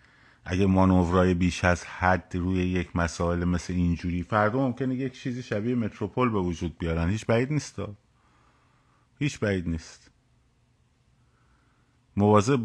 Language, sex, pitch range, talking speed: Persian, male, 90-110 Hz, 125 wpm